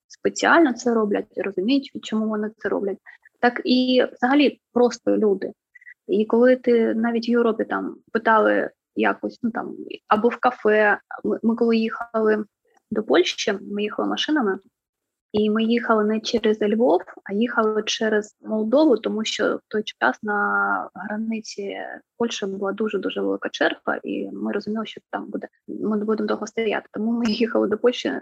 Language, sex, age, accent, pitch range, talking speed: Ukrainian, female, 20-39, native, 215-245 Hz, 155 wpm